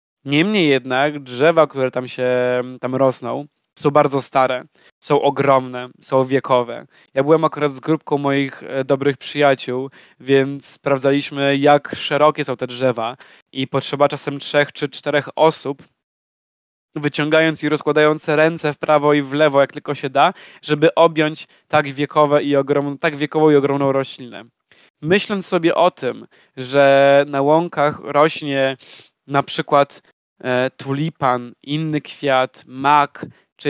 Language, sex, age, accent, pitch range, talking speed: Polish, male, 20-39, native, 135-155 Hz, 130 wpm